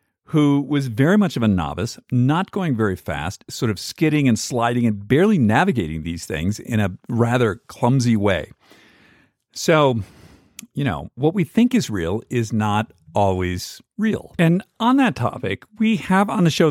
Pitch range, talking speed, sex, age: 105-155 Hz, 170 wpm, male, 50-69